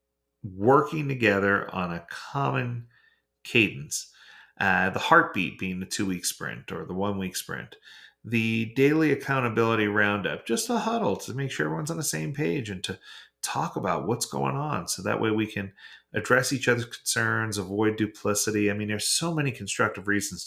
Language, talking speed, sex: English, 170 wpm, male